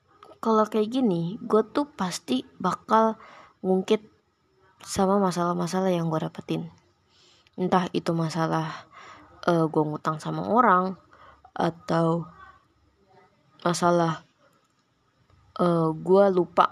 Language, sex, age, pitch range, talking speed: Indonesian, female, 20-39, 165-215 Hz, 95 wpm